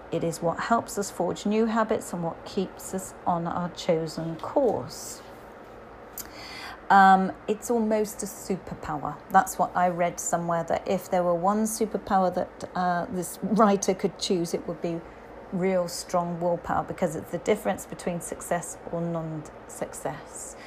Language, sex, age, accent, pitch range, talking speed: English, female, 40-59, British, 175-205 Hz, 150 wpm